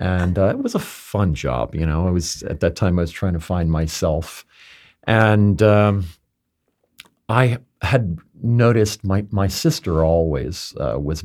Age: 40-59